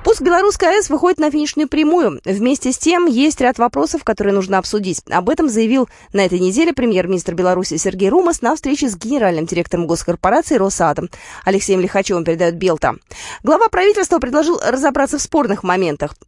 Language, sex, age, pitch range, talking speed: Russian, female, 20-39, 190-300 Hz, 160 wpm